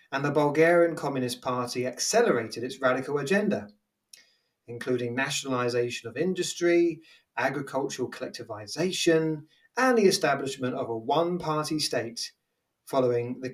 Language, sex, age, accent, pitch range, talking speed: English, male, 30-49, British, 115-160 Hz, 110 wpm